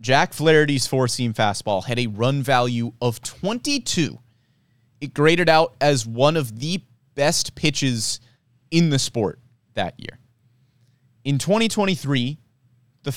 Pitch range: 120-150 Hz